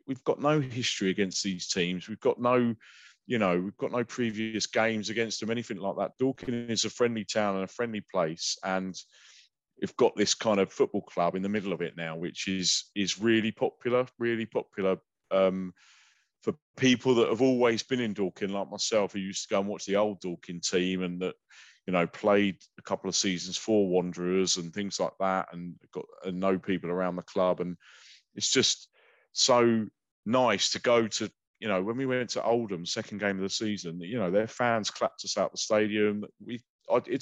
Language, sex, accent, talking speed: English, male, British, 205 wpm